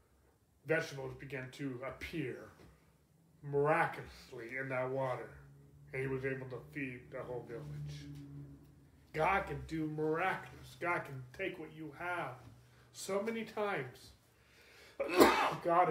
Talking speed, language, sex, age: 115 wpm, English, male, 30-49